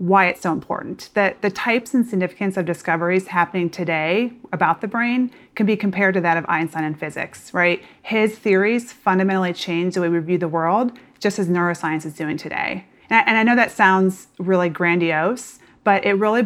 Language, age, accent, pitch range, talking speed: English, 30-49, American, 175-205 Hz, 190 wpm